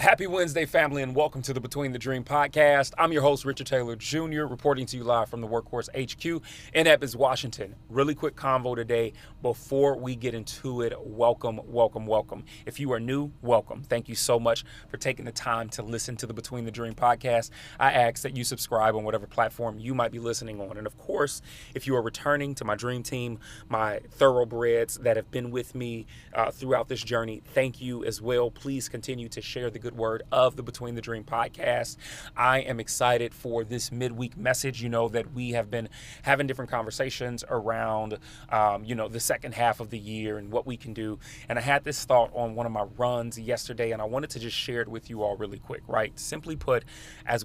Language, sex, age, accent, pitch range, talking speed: English, male, 30-49, American, 115-130 Hz, 215 wpm